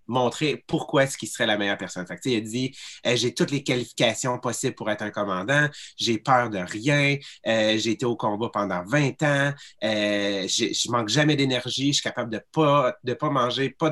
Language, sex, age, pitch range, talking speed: English, male, 30-49, 105-135 Hz, 210 wpm